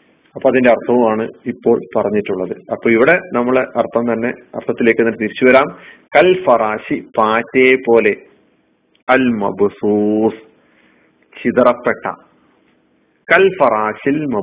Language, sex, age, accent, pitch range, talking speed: Malayalam, male, 40-59, native, 105-140 Hz, 75 wpm